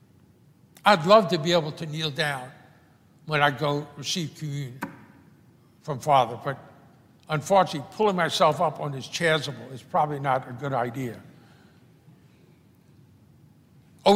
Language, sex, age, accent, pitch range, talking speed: English, male, 60-79, American, 150-200 Hz, 125 wpm